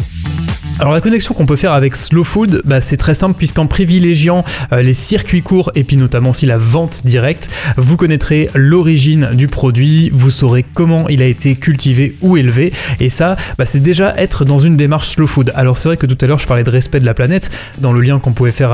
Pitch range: 125-150 Hz